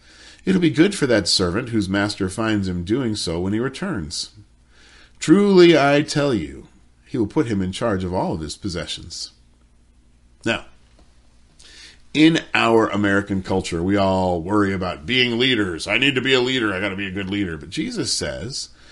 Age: 40-59